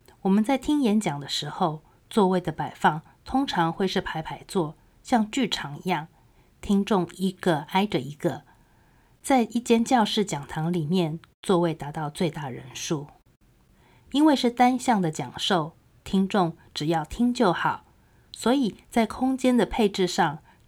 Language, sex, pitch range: Chinese, female, 160-210 Hz